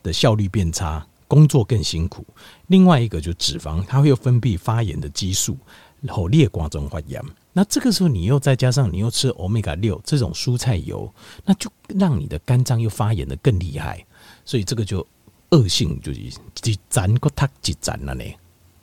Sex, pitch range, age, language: male, 85-130 Hz, 50-69, Chinese